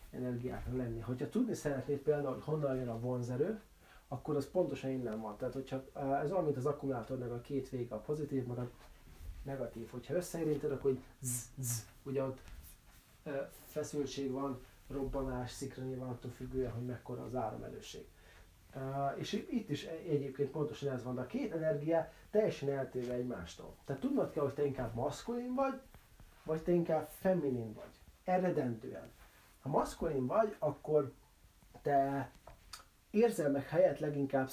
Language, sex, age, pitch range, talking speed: Hungarian, male, 30-49, 130-150 Hz, 140 wpm